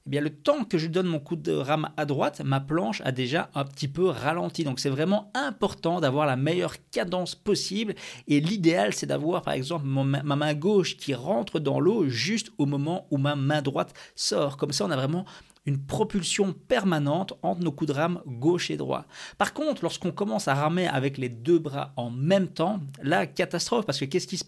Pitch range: 145-195 Hz